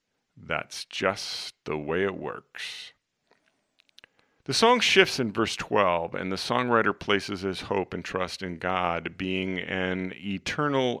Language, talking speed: English, 135 wpm